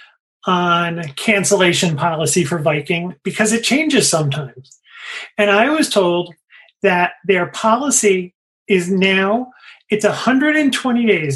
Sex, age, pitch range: male, 30-49, 175-225 Hz